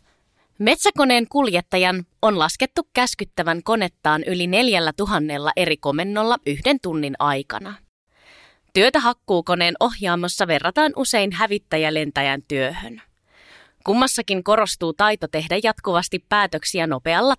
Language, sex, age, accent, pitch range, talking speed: Finnish, female, 20-39, native, 155-225 Hz, 95 wpm